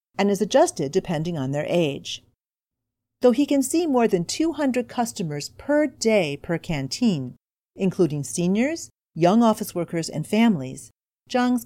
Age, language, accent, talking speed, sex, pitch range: 40-59, English, American, 140 wpm, female, 150-245 Hz